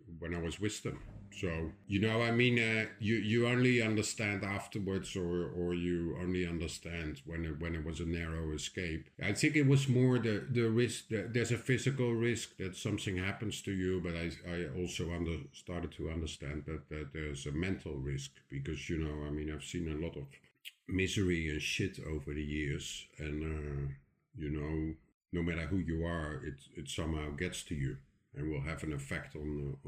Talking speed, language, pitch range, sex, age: 195 wpm, English, 75-95 Hz, male, 50-69